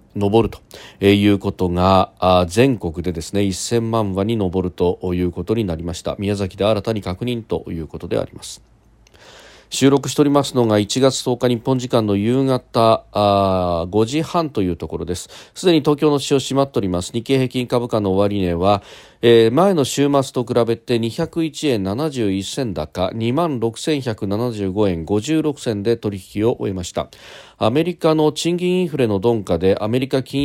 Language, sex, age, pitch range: Japanese, male, 40-59, 100-140 Hz